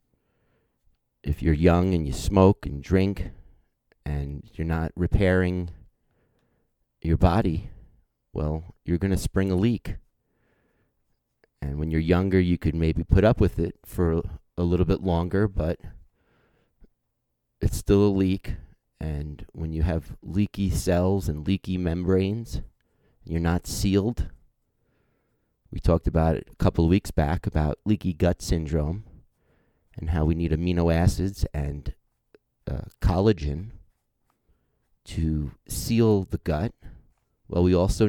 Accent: American